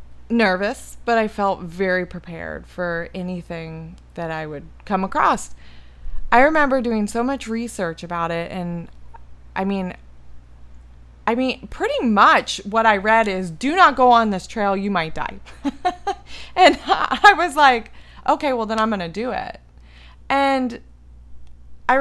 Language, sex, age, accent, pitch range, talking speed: English, female, 20-39, American, 155-240 Hz, 150 wpm